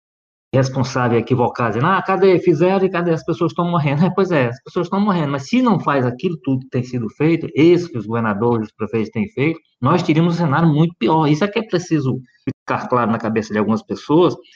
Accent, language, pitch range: Brazilian, Portuguese, 125-180 Hz